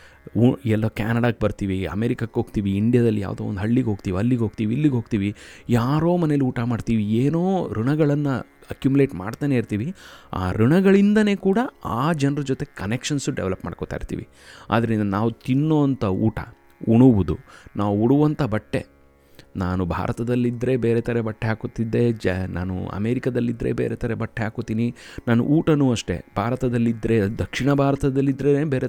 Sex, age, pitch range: male, 30-49, 100-130 Hz